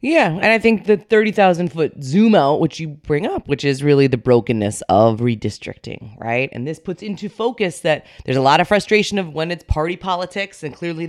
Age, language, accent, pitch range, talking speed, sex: 20-39, English, American, 130-175 Hz, 205 wpm, female